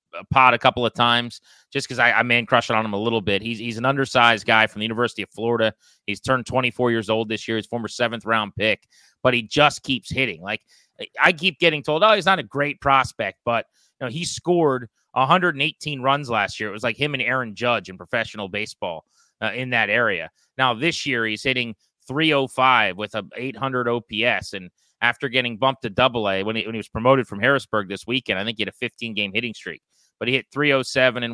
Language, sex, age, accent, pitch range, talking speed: English, male, 30-49, American, 110-135 Hz, 230 wpm